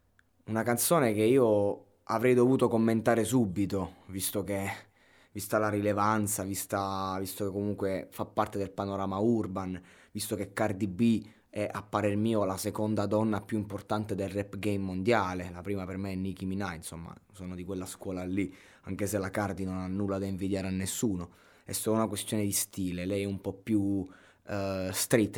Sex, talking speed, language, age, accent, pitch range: male, 175 wpm, Italian, 20-39, native, 95-115 Hz